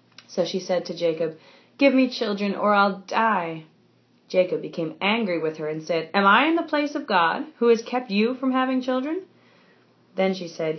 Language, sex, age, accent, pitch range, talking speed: English, female, 30-49, American, 170-220 Hz, 195 wpm